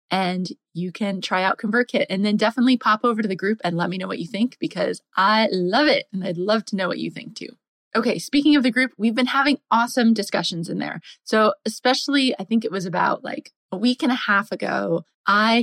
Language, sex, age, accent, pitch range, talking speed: English, female, 20-39, American, 190-245 Hz, 235 wpm